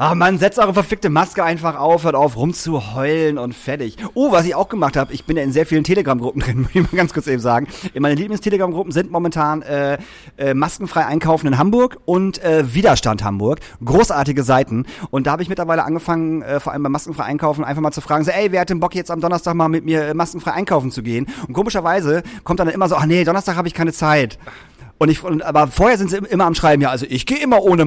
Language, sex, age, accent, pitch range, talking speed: German, male, 40-59, German, 140-180 Hz, 240 wpm